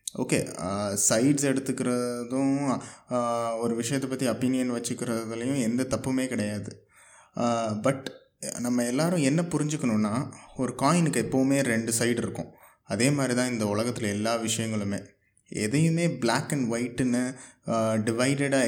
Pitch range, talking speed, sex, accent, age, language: 115-135 Hz, 110 wpm, male, native, 20-39, Tamil